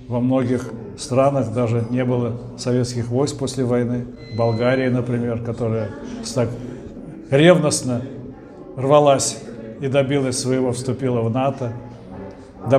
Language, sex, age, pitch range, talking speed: Russian, male, 60-79, 120-145 Hz, 110 wpm